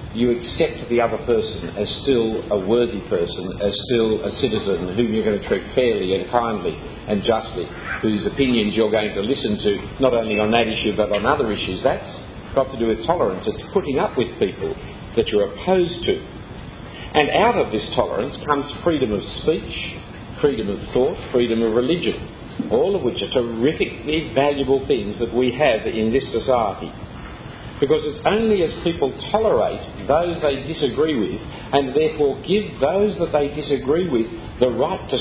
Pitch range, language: 110-160 Hz, English